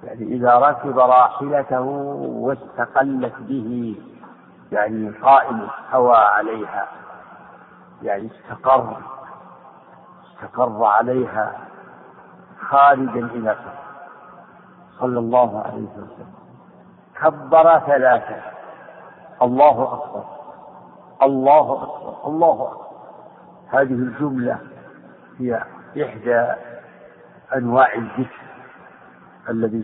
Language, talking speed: Arabic, 80 wpm